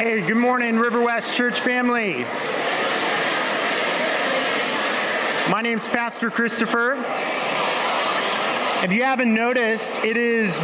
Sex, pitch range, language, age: male, 155-225 Hz, English, 40-59